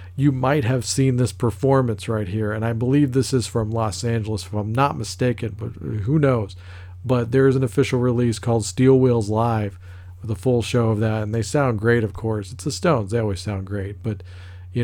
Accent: American